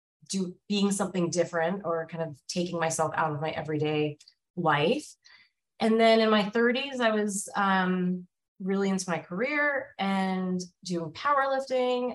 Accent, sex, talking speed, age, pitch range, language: American, female, 145 wpm, 30-49, 160-210 Hz, English